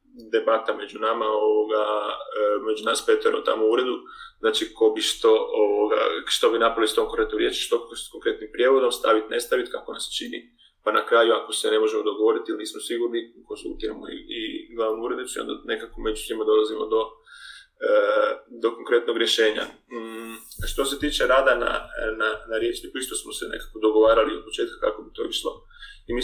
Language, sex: Croatian, male